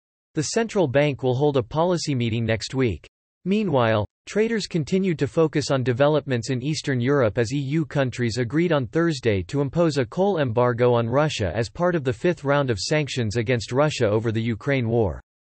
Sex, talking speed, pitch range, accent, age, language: male, 180 wpm, 120-160 Hz, American, 40-59, English